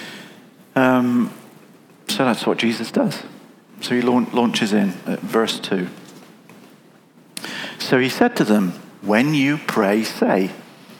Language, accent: English, British